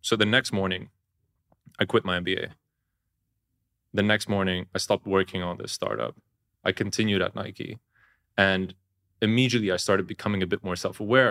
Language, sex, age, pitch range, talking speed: English, male, 30-49, 95-110 Hz, 160 wpm